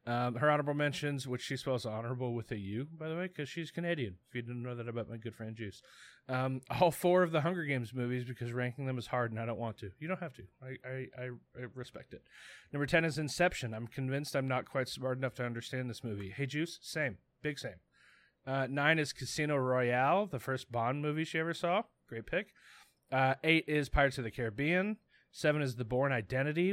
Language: English